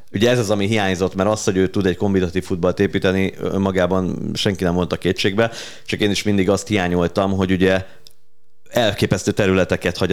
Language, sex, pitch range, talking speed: Hungarian, male, 90-100 Hz, 185 wpm